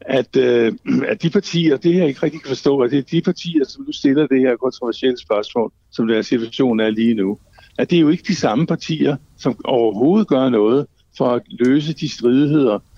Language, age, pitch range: Danish, 60-79, 115-155 Hz